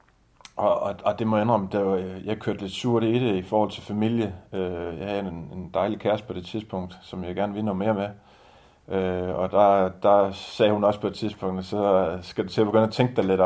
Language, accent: Danish, native